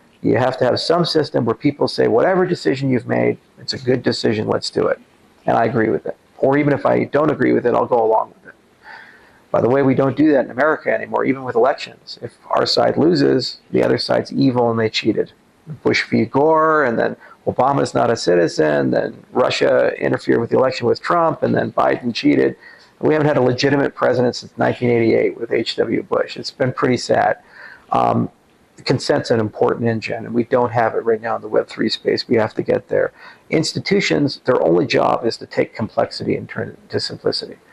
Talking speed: 210 wpm